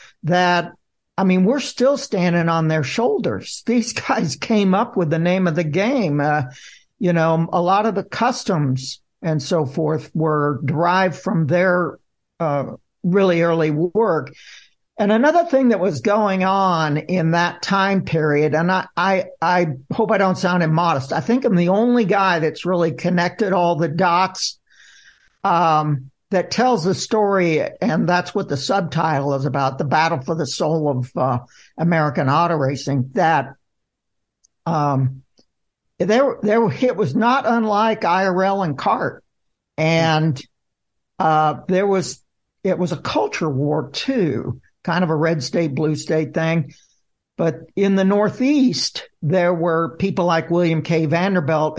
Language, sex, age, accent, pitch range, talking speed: English, male, 60-79, American, 155-195 Hz, 155 wpm